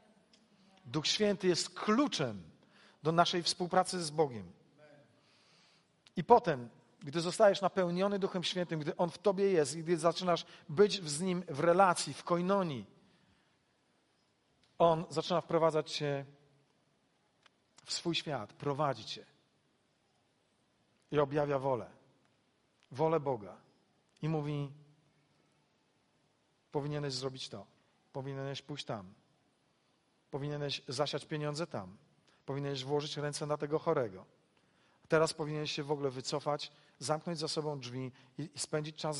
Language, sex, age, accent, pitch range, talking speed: Polish, male, 40-59, native, 145-180 Hz, 115 wpm